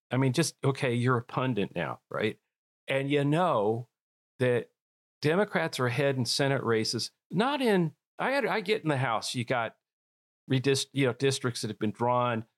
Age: 40-59